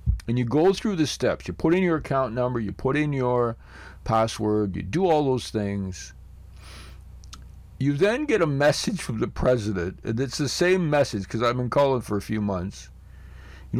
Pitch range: 95-150 Hz